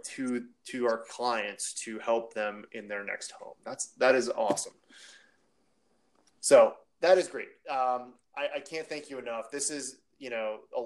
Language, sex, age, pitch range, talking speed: English, male, 20-39, 110-165 Hz, 170 wpm